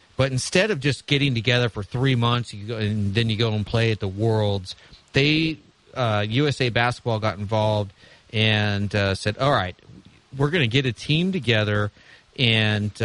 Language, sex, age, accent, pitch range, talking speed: English, male, 40-59, American, 105-135 Hz, 170 wpm